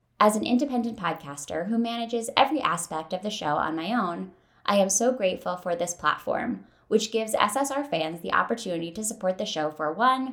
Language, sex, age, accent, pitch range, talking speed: English, female, 20-39, American, 165-240 Hz, 190 wpm